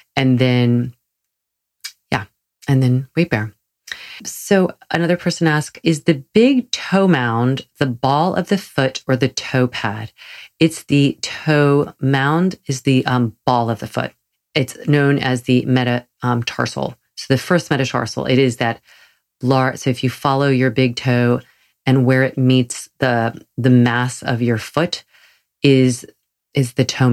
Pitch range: 120-135 Hz